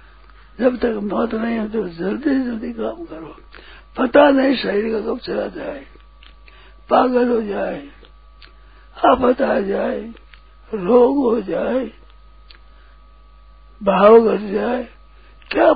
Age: 60-79